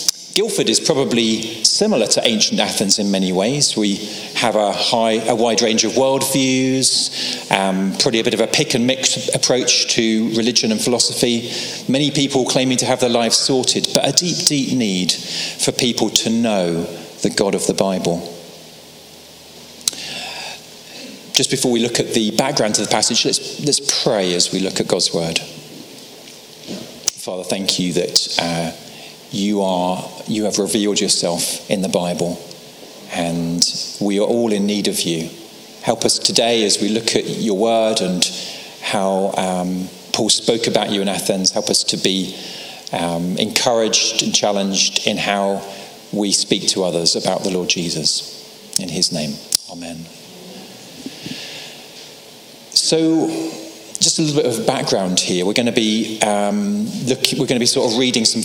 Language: English